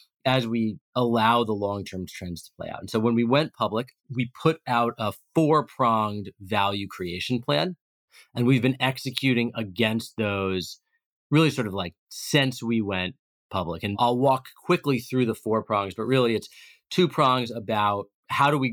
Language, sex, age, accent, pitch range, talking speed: English, male, 30-49, American, 100-125 Hz, 175 wpm